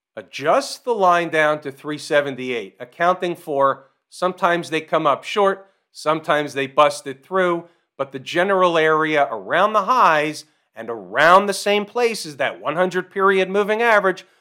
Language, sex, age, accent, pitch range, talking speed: English, male, 40-59, American, 155-220 Hz, 150 wpm